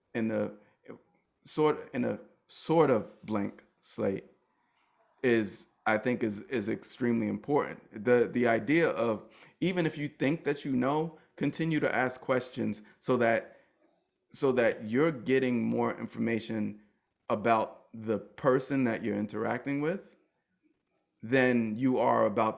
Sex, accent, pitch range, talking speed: male, American, 110-130 Hz, 135 wpm